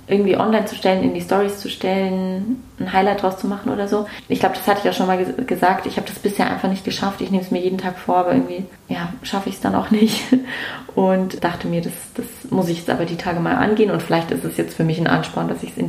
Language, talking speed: German, 285 wpm